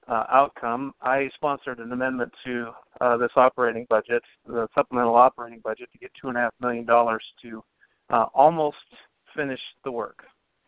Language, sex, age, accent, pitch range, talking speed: English, male, 50-69, American, 120-140 Hz, 140 wpm